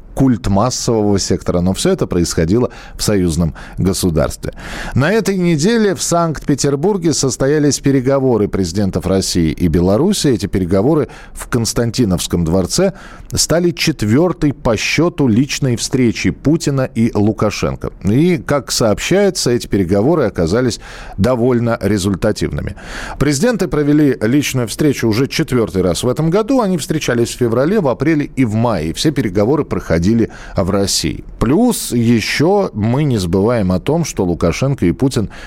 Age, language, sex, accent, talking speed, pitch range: 40-59, Russian, male, native, 130 wpm, 95-145 Hz